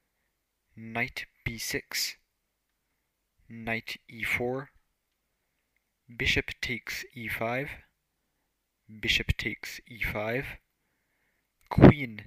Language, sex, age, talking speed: English, male, 20-39, 55 wpm